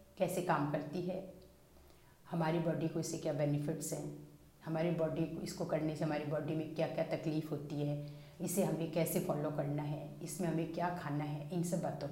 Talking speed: 195 wpm